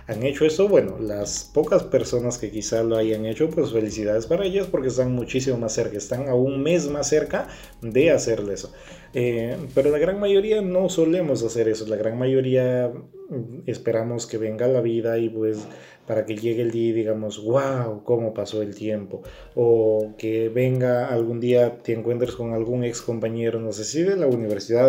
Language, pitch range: Spanish, 110-135 Hz